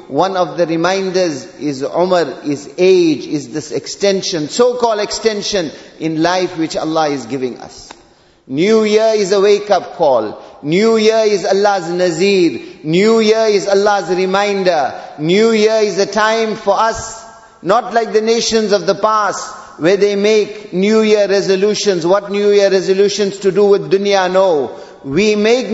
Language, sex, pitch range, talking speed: English, male, 195-220 Hz, 155 wpm